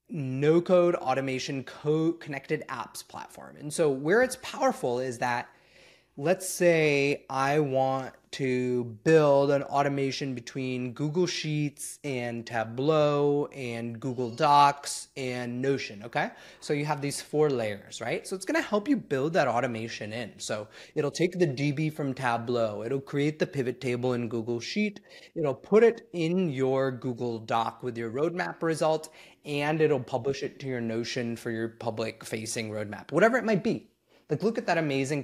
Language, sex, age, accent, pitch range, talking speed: English, male, 30-49, American, 125-160 Hz, 160 wpm